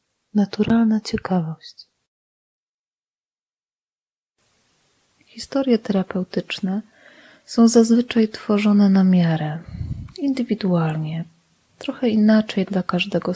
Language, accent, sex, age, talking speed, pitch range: Polish, native, female, 20-39, 65 wpm, 180-220 Hz